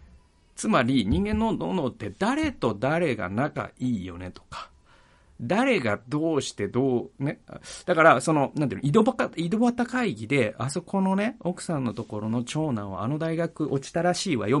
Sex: male